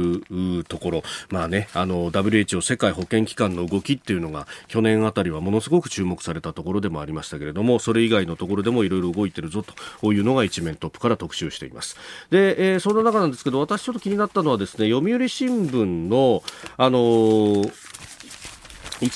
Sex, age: male, 40-59